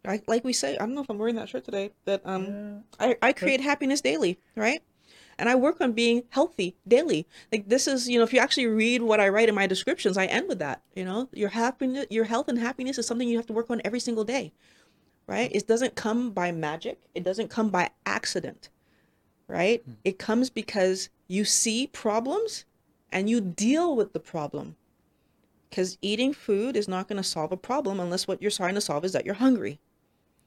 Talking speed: 210 wpm